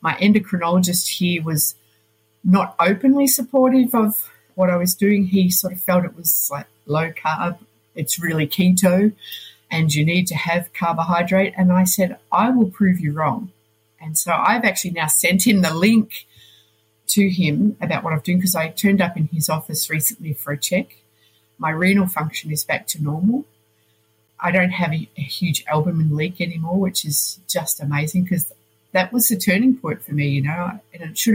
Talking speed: 185 wpm